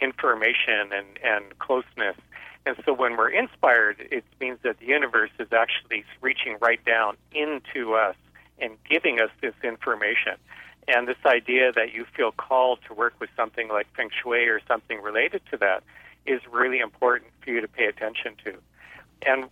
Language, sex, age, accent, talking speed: English, male, 50-69, American, 170 wpm